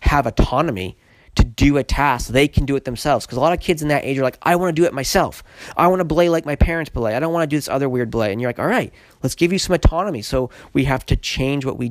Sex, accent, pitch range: male, American, 125-150 Hz